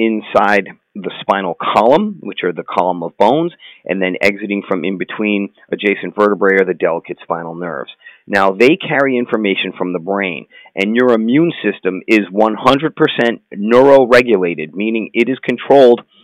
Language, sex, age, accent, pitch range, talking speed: English, male, 40-59, American, 95-120 Hz, 155 wpm